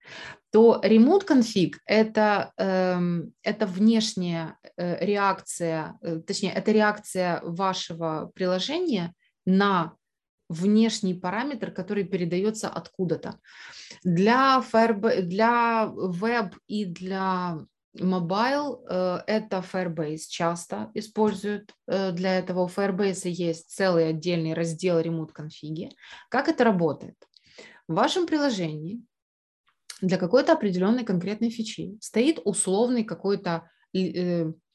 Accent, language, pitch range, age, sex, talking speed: native, Ukrainian, 180-230 Hz, 20-39, female, 90 wpm